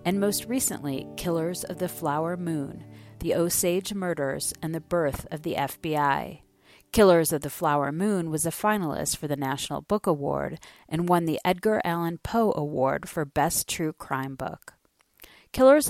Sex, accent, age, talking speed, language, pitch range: female, American, 40-59, 160 wpm, English, 145-180 Hz